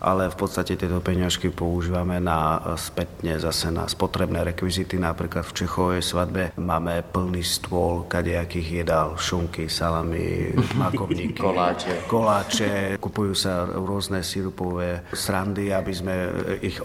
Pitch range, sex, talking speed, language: 85-95 Hz, male, 120 wpm, Slovak